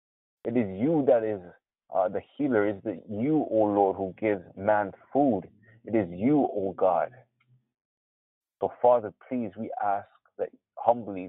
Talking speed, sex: 170 wpm, male